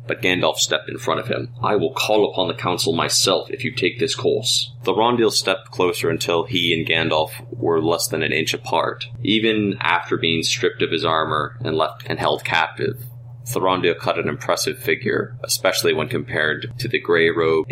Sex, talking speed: male, 185 wpm